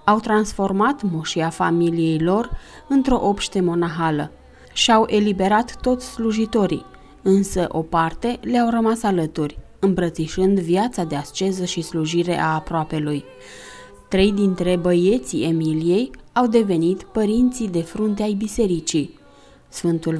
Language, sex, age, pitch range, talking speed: Romanian, female, 30-49, 165-225 Hz, 115 wpm